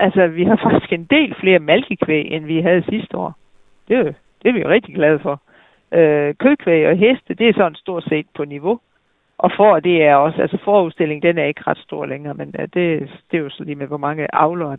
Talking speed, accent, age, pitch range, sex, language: 225 wpm, native, 60-79, 155-205 Hz, female, Danish